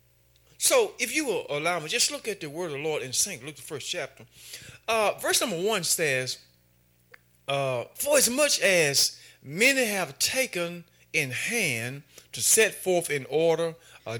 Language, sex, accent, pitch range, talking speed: English, male, American, 110-165 Hz, 175 wpm